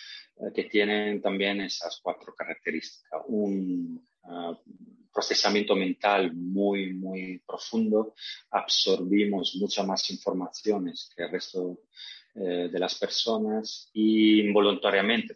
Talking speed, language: 100 wpm, Spanish